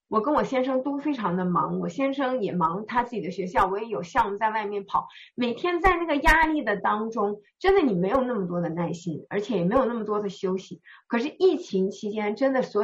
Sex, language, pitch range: female, Chinese, 200-295 Hz